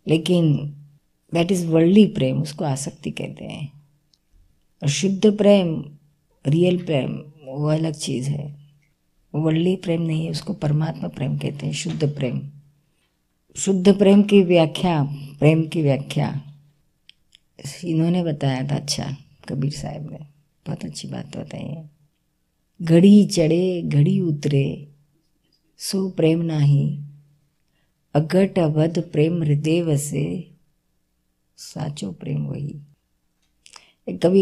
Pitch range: 145-170 Hz